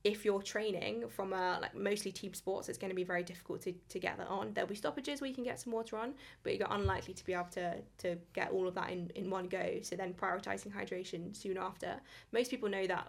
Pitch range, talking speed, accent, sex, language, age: 180-210 Hz, 255 wpm, British, female, English, 20-39